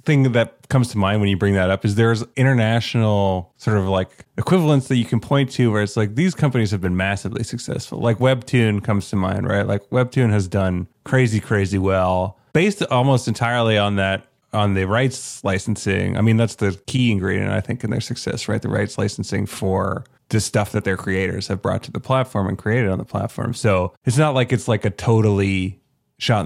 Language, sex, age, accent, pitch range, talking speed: English, male, 30-49, American, 100-130 Hz, 210 wpm